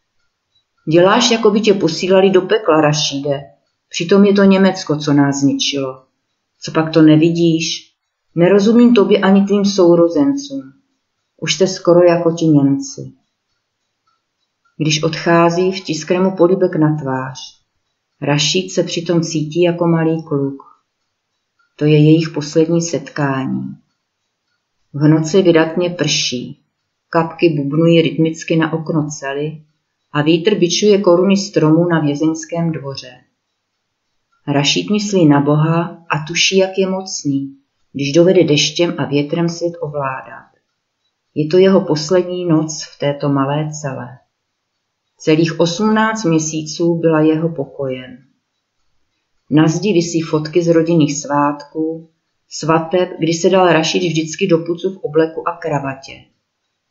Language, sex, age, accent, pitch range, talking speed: Czech, female, 40-59, native, 145-175 Hz, 120 wpm